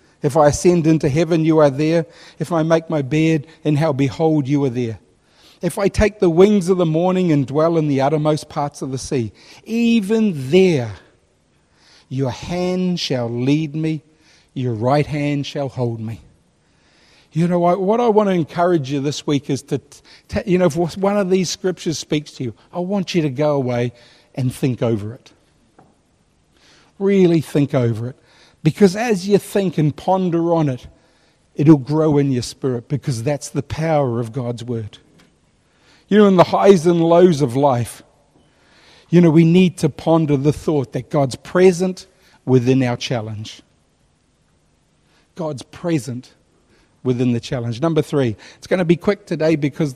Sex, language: male, English